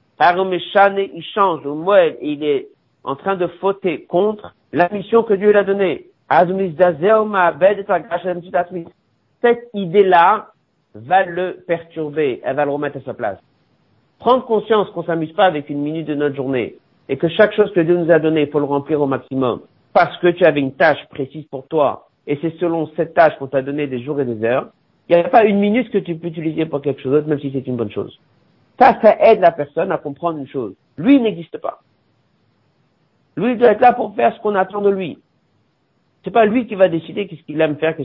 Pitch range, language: 145-205 Hz, French